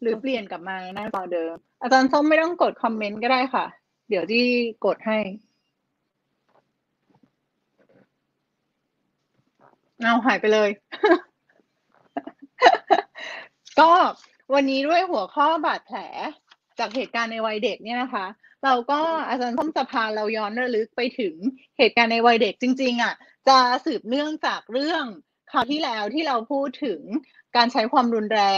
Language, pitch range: Thai, 200-260 Hz